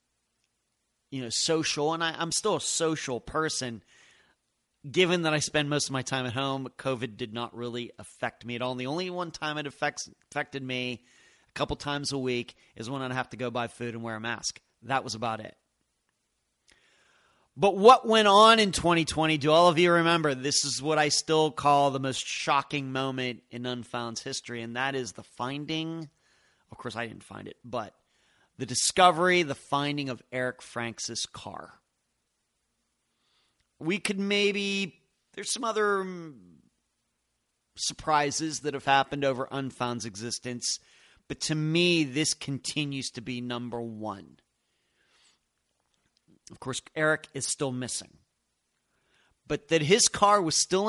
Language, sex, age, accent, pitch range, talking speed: English, male, 30-49, American, 125-160 Hz, 160 wpm